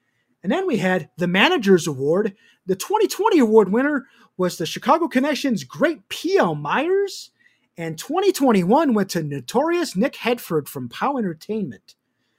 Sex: male